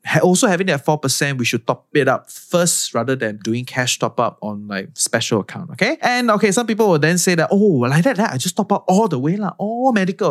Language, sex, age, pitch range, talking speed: English, male, 20-39, 120-175 Hz, 250 wpm